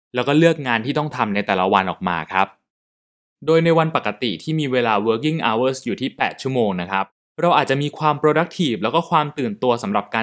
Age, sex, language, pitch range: 20-39, male, Thai, 115-160 Hz